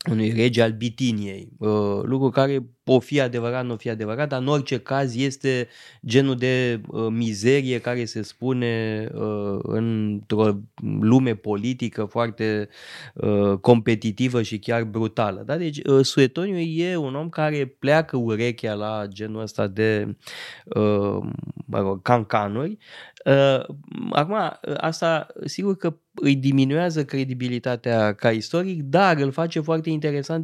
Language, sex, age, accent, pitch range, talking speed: Romanian, male, 20-39, native, 110-140 Hz, 130 wpm